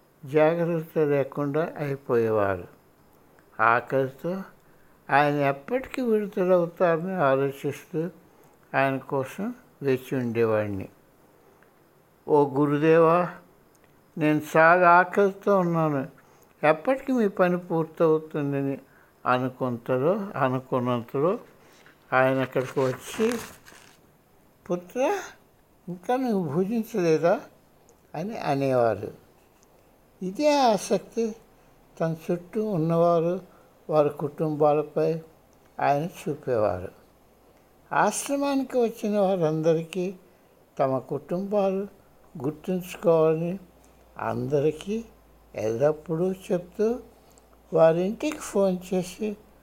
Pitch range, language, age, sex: 145-195 Hz, Hindi, 60-79, male